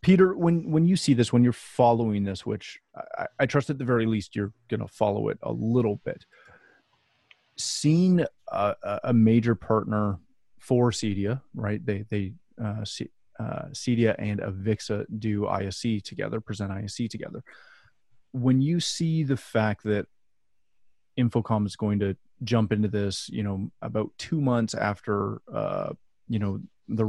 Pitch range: 100-125 Hz